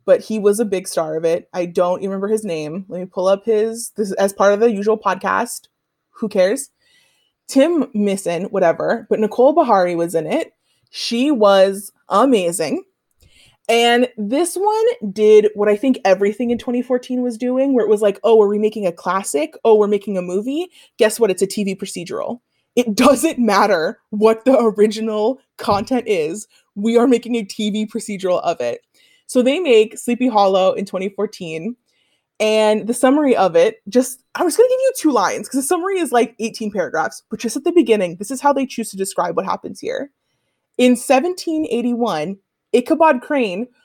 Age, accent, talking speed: 20-39, American, 185 wpm